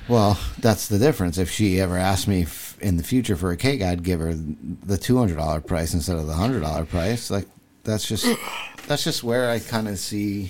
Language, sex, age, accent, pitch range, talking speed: English, male, 50-69, American, 80-100 Hz, 225 wpm